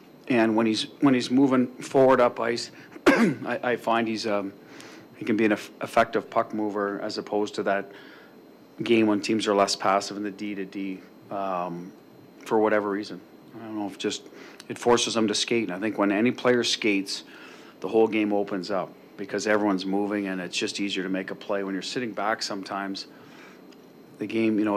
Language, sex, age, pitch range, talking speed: English, male, 40-59, 100-110 Hz, 195 wpm